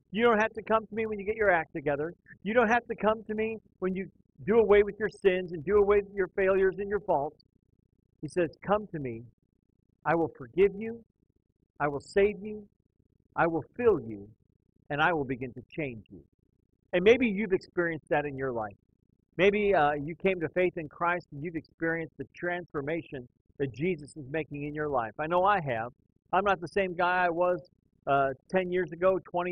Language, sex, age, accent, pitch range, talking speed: English, male, 50-69, American, 130-190 Hz, 210 wpm